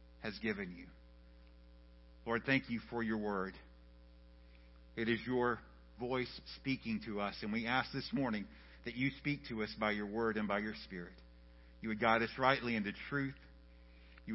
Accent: American